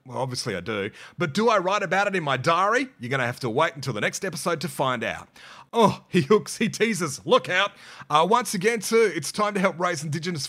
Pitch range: 130-175 Hz